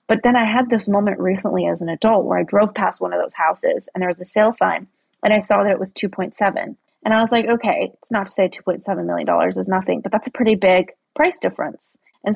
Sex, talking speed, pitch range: female, 250 wpm, 185-220 Hz